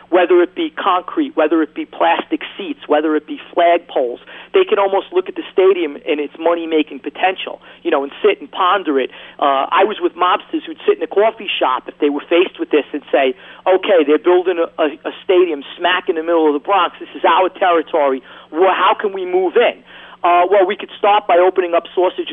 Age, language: 40-59, English